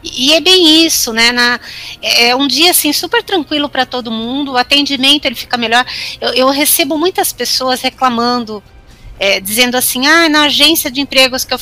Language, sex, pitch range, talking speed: Portuguese, female, 225-305 Hz, 185 wpm